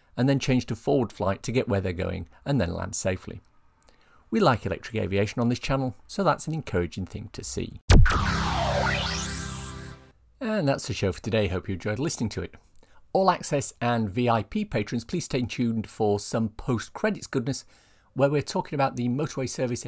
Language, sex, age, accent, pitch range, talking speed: English, male, 50-69, British, 100-140 Hz, 180 wpm